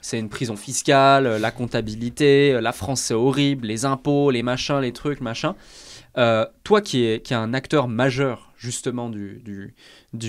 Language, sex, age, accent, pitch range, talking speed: French, male, 20-39, French, 115-140 Hz, 175 wpm